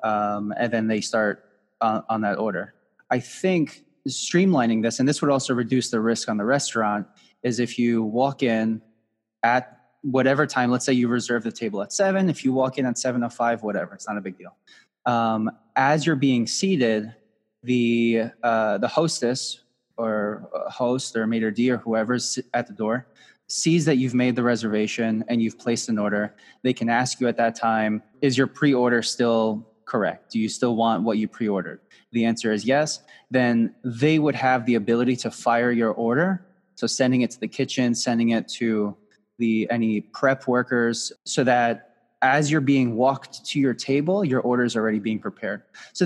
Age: 20-39